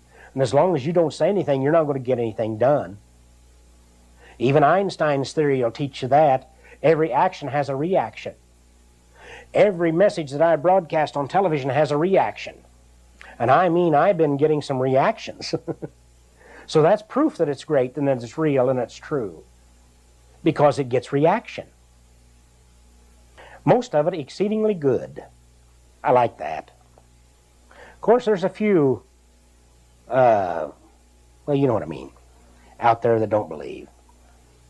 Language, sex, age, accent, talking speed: English, male, 60-79, American, 150 wpm